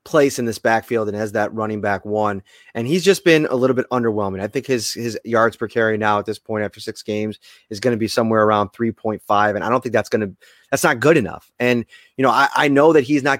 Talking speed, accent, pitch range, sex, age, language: 265 wpm, American, 110-130 Hz, male, 20-39, English